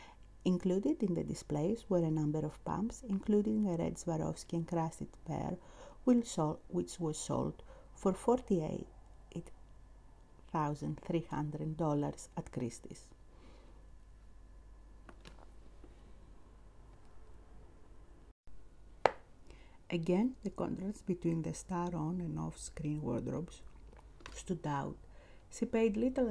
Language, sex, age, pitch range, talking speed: English, female, 50-69, 130-180 Hz, 80 wpm